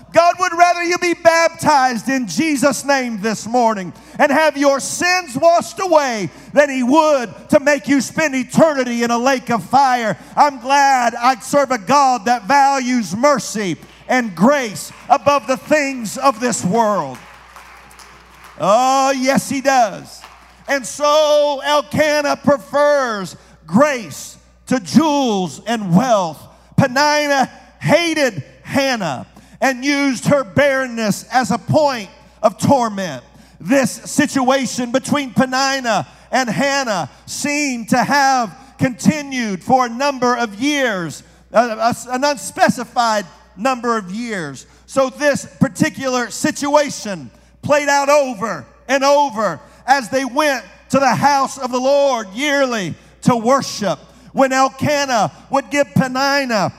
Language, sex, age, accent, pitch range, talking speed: English, male, 50-69, American, 230-285 Hz, 125 wpm